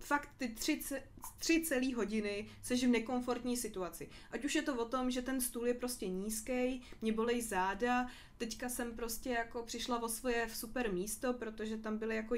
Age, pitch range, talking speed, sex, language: 20-39, 210-245 Hz, 180 wpm, female, Czech